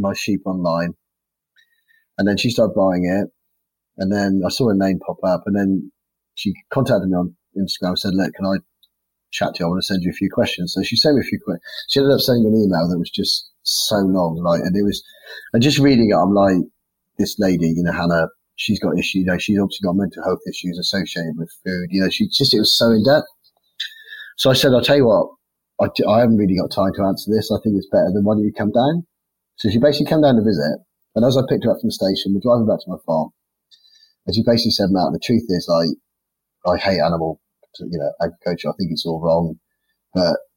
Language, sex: English, male